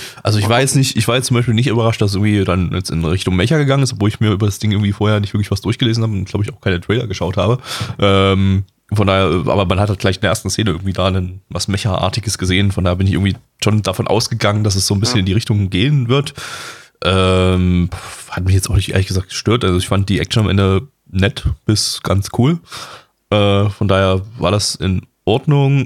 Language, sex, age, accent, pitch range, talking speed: German, male, 20-39, German, 95-120 Hz, 250 wpm